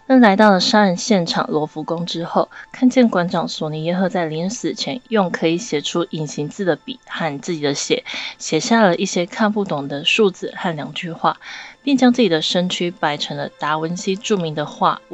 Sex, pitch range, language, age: female, 160-205 Hz, Chinese, 20-39